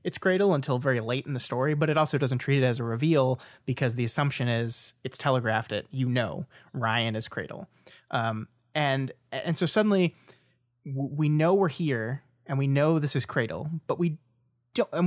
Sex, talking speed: male, 185 wpm